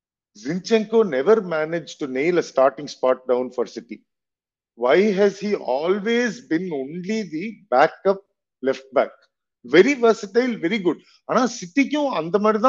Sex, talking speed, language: male, 135 wpm, Tamil